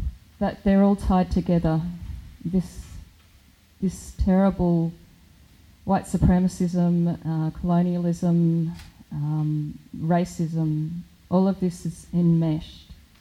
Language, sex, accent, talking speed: English, female, Australian, 85 wpm